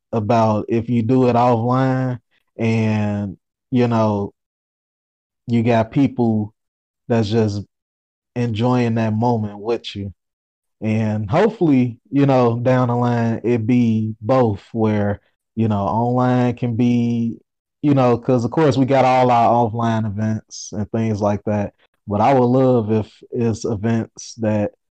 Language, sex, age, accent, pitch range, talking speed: English, male, 20-39, American, 105-125 Hz, 140 wpm